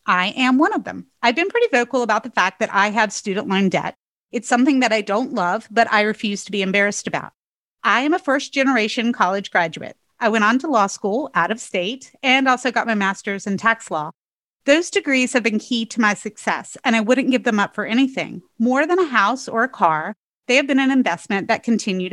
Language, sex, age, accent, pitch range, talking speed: English, female, 30-49, American, 200-265 Hz, 230 wpm